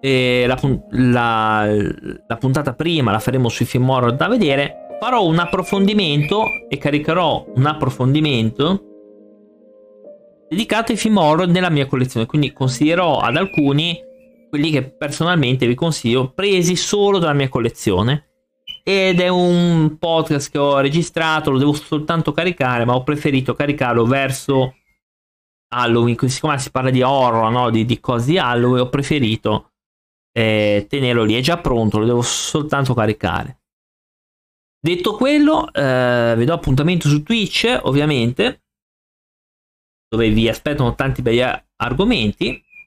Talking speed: 135 wpm